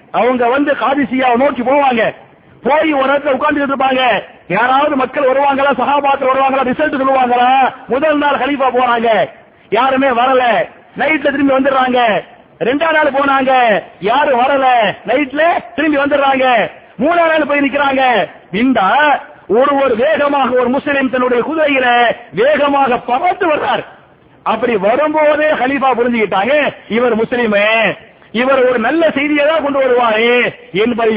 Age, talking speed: 50-69, 125 wpm